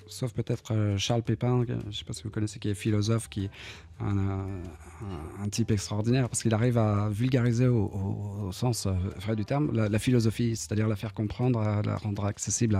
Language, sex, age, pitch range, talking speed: French, male, 40-59, 95-115 Hz, 200 wpm